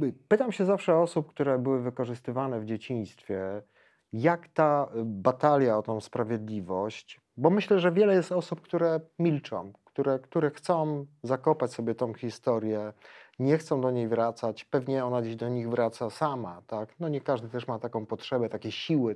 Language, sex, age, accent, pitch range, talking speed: Polish, male, 40-59, native, 110-150 Hz, 155 wpm